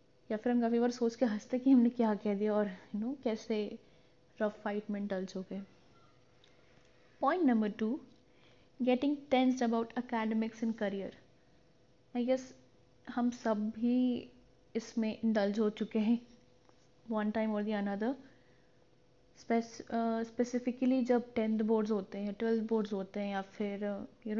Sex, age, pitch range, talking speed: female, 10-29, 210-240 Hz, 100 wpm